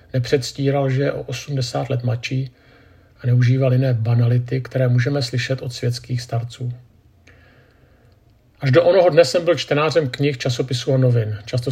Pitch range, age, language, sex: 120-135 Hz, 50-69, Czech, male